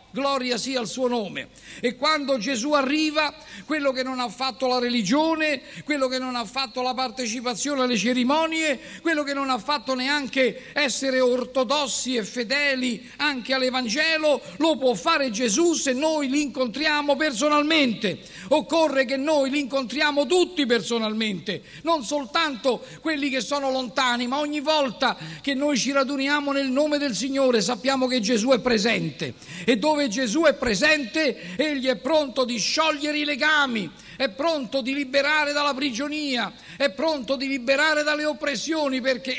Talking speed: 150 wpm